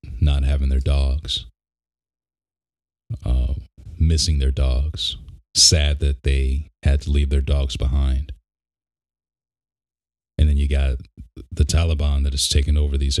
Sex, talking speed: male, 125 wpm